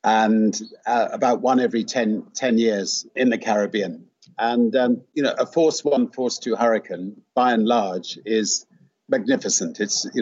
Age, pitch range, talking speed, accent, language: 50-69, 105-120 Hz, 165 wpm, British, English